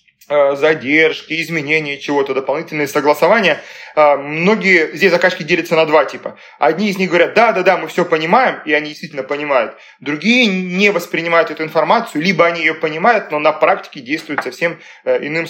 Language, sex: Russian, male